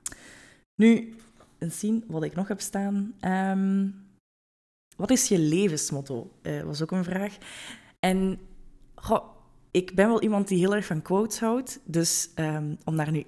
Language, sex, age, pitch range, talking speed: Dutch, female, 20-39, 155-190 Hz, 145 wpm